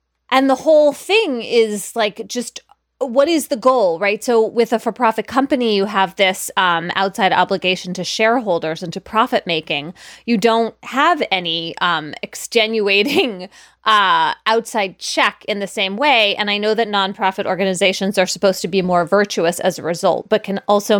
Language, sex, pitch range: English, female, 195-270 Hz